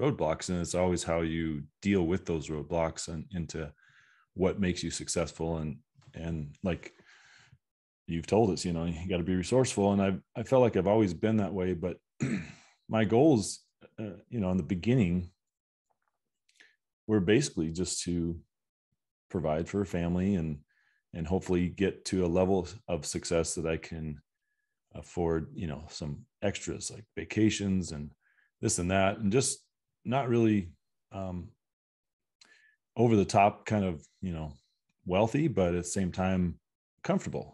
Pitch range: 80-100 Hz